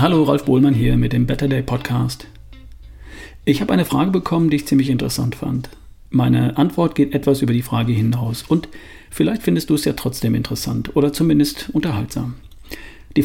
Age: 40-59